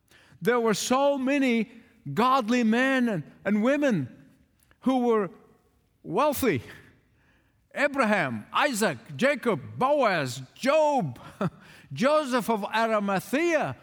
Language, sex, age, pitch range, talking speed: English, male, 50-69, 165-230 Hz, 85 wpm